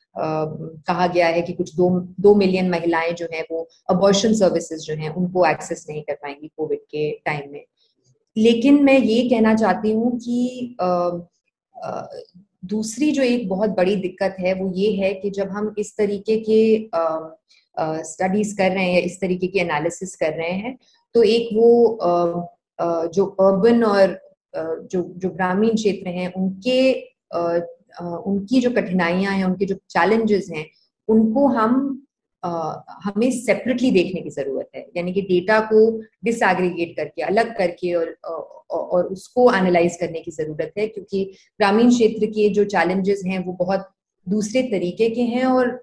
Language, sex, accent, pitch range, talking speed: Hindi, female, native, 175-220 Hz, 165 wpm